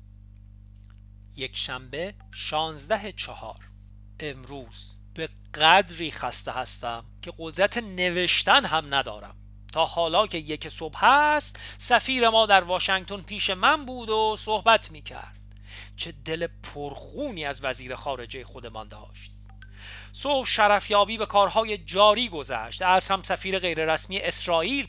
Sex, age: male, 40-59